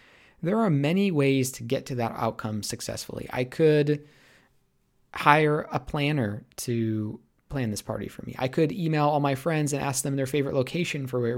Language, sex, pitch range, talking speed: English, male, 120-155 Hz, 185 wpm